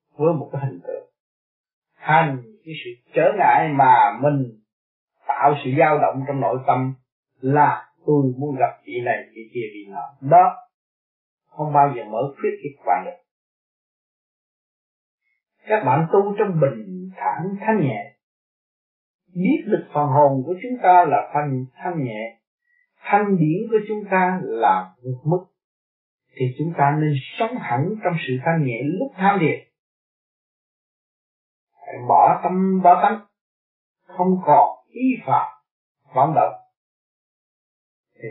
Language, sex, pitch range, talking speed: Vietnamese, male, 135-185 Hz, 140 wpm